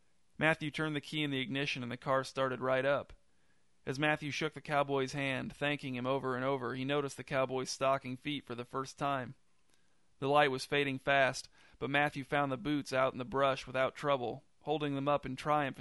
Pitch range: 125-140 Hz